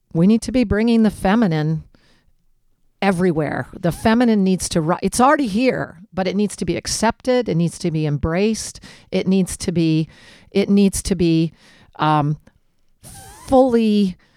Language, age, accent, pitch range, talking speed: English, 50-69, American, 165-210 Hz, 150 wpm